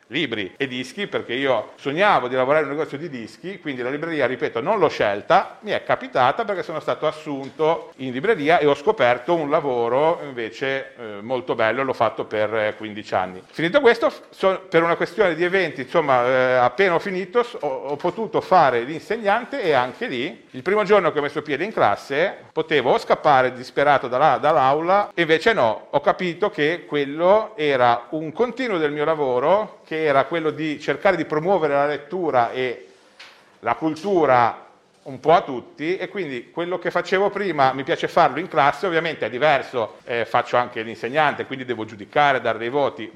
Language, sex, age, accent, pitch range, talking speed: Italian, male, 50-69, native, 130-175 Hz, 180 wpm